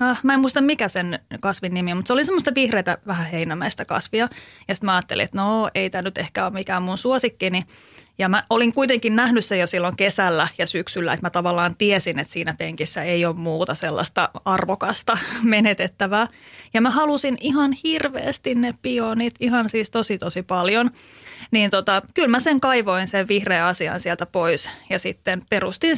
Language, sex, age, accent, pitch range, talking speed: Finnish, female, 30-49, native, 180-230 Hz, 185 wpm